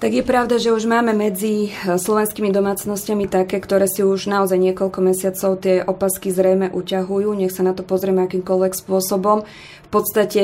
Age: 20-39